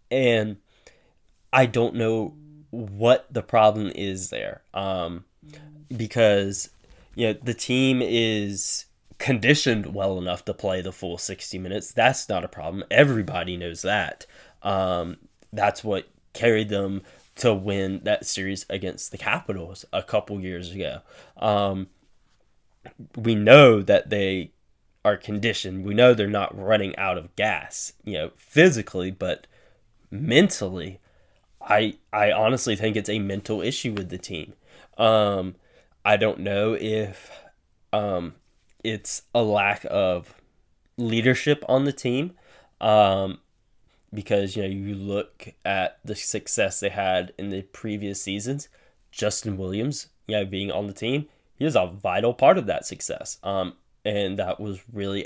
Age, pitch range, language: 10-29, 95-115 Hz, English